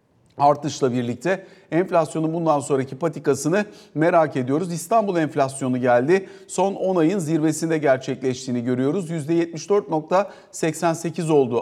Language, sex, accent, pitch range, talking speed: Turkish, male, native, 140-185 Hz, 100 wpm